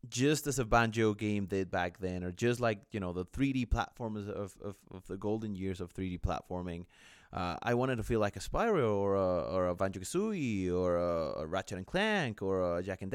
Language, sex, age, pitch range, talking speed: English, male, 30-49, 95-130 Hz, 215 wpm